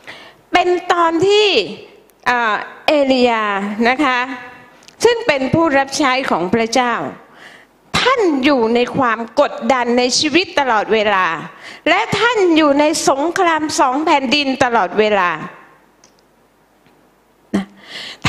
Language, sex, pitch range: Thai, female, 250-365 Hz